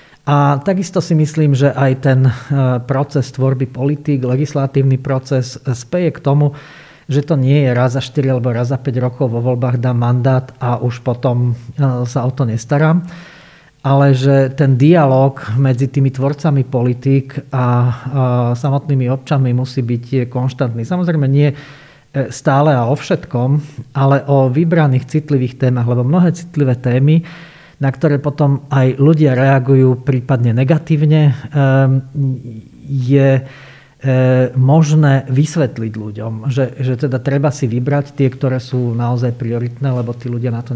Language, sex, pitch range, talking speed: Slovak, male, 130-145 Hz, 140 wpm